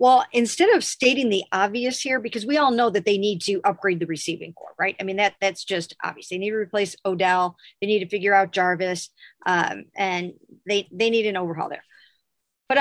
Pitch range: 185-225 Hz